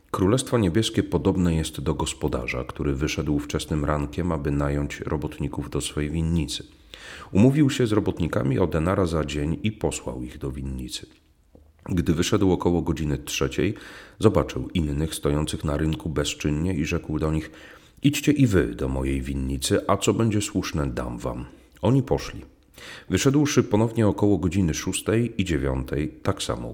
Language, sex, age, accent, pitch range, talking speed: Polish, male, 40-59, native, 70-95 Hz, 150 wpm